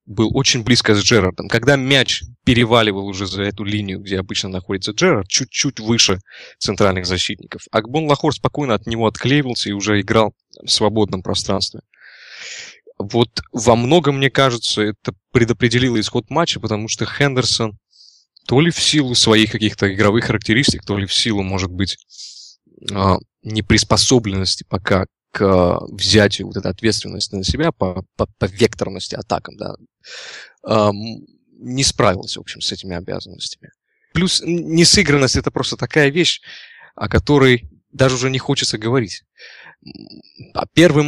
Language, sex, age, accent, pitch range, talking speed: Russian, male, 20-39, native, 100-135 Hz, 135 wpm